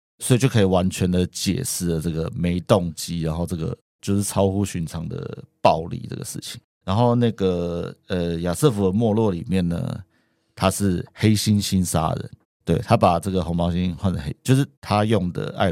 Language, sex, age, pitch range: Chinese, male, 50-69, 90-105 Hz